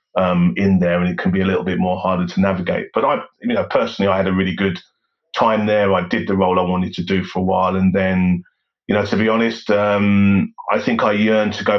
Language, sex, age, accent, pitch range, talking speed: English, male, 30-49, British, 90-100 Hz, 260 wpm